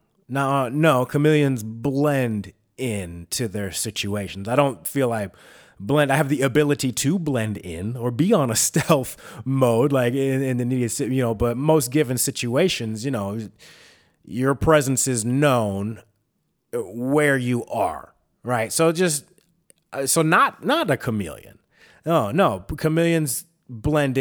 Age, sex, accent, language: 30-49, male, American, English